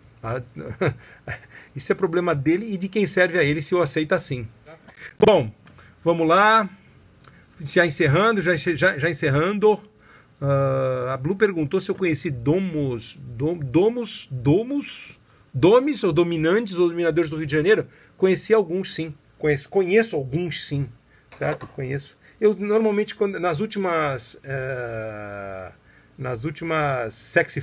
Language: Portuguese